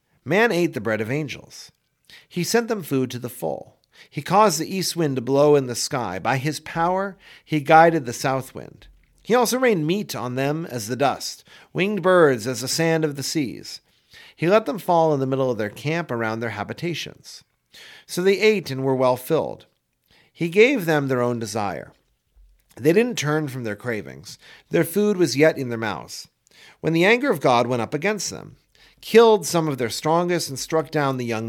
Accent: American